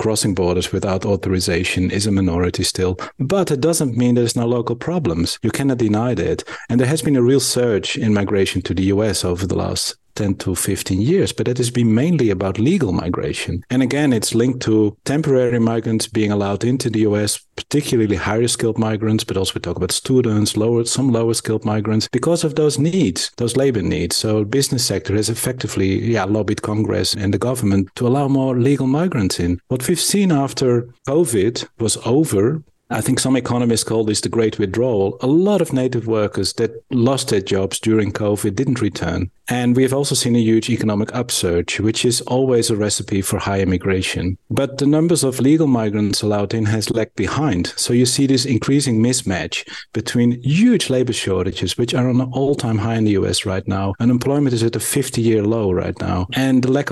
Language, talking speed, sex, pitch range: English, 195 wpm, male, 105-130 Hz